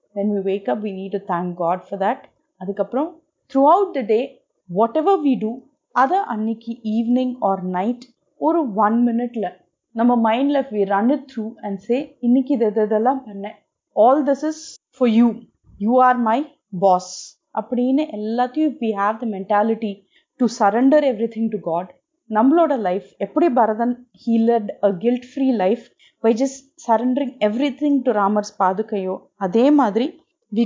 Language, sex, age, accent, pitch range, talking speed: Tamil, female, 30-49, native, 200-265 Hz, 155 wpm